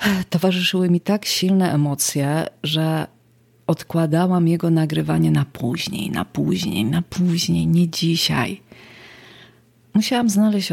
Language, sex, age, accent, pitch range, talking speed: Polish, female, 40-59, native, 150-185 Hz, 105 wpm